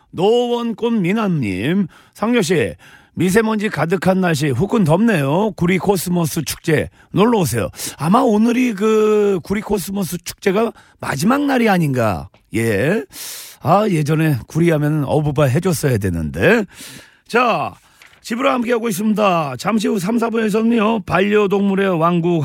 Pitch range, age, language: 165-220 Hz, 40-59, Korean